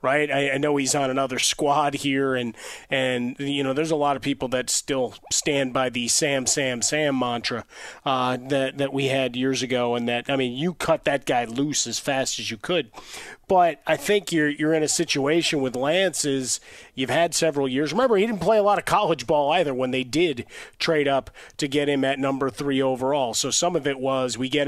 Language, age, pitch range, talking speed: English, 30-49, 130-145 Hz, 220 wpm